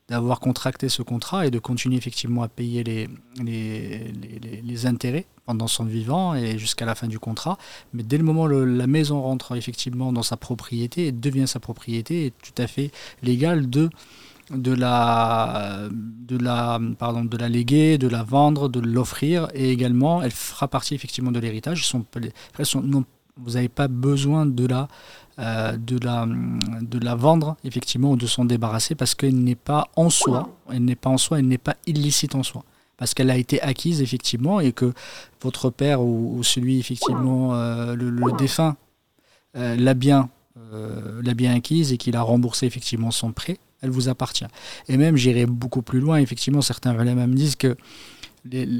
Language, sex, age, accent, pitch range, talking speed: French, male, 40-59, French, 120-135 Hz, 185 wpm